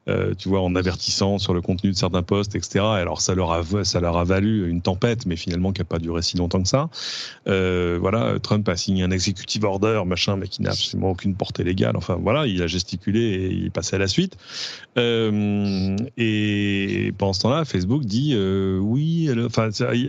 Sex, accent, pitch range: male, French, 95-110 Hz